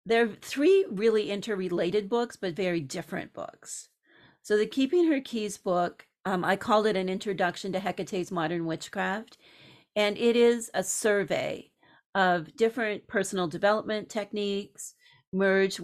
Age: 40-59